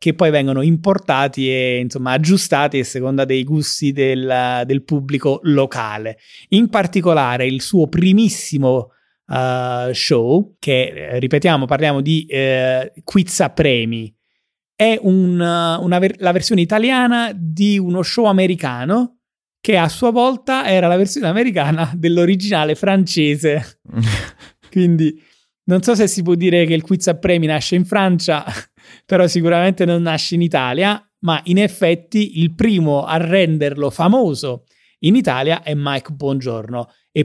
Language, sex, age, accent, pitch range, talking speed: Italian, male, 30-49, native, 145-195 Hz, 135 wpm